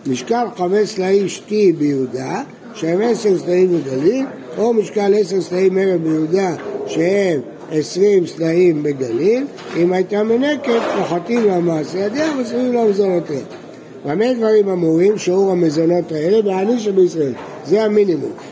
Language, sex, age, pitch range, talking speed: Hebrew, male, 60-79, 165-215 Hz, 120 wpm